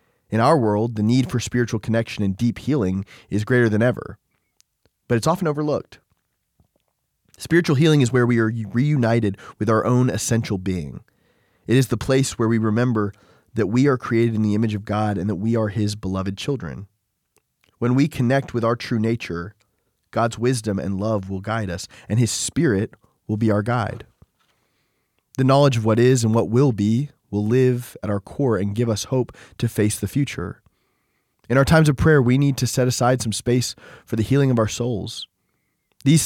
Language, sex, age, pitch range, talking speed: English, male, 20-39, 105-130 Hz, 190 wpm